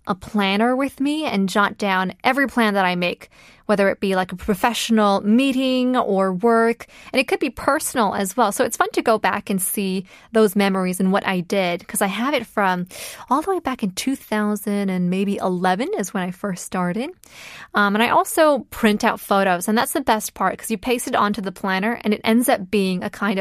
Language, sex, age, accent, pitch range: Korean, female, 20-39, American, 195-260 Hz